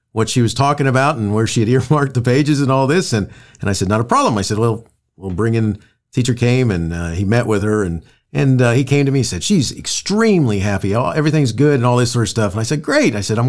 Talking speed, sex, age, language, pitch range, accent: 280 wpm, male, 50-69, English, 110-155 Hz, American